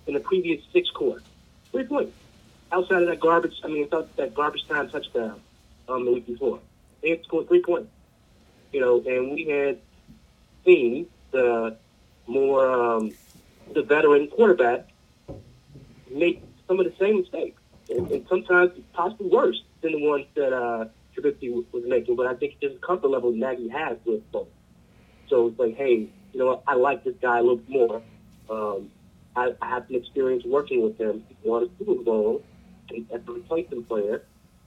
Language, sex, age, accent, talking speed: English, male, 30-49, American, 175 wpm